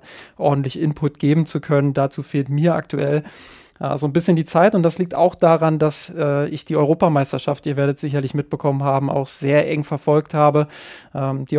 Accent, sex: German, male